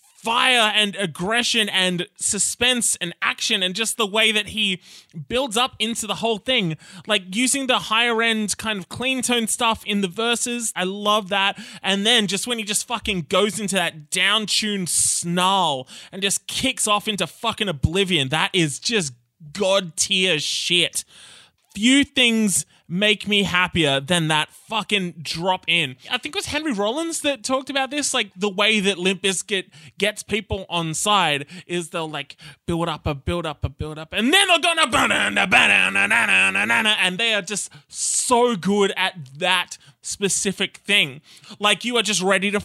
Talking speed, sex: 170 wpm, male